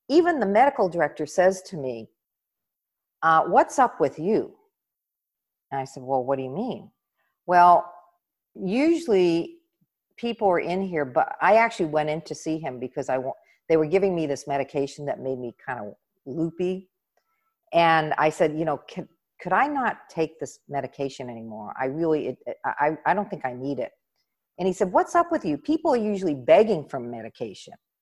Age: 50-69